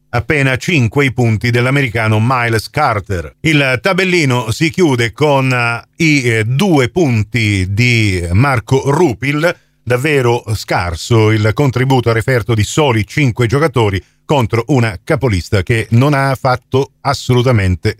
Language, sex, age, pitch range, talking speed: Italian, male, 40-59, 110-135 Hz, 120 wpm